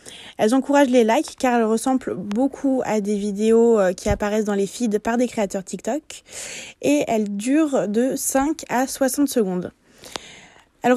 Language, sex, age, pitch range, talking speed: French, female, 20-39, 220-275 Hz, 160 wpm